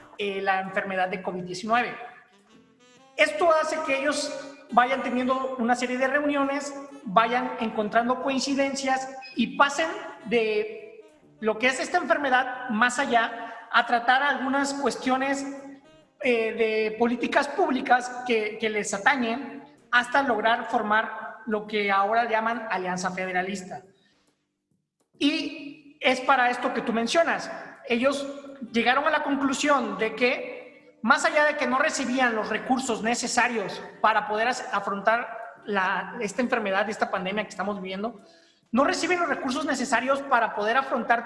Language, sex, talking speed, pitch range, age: Spanish, male, 130 wpm, 225-275 Hz, 40-59